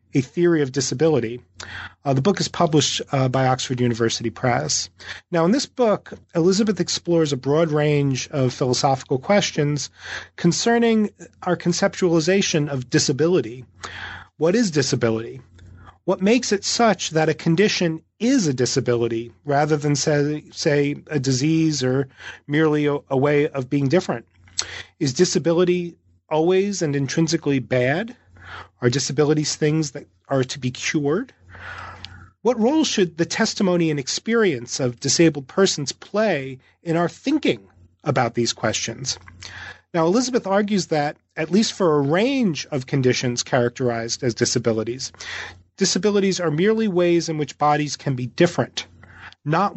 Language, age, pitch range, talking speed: English, 40-59, 125-175 Hz, 135 wpm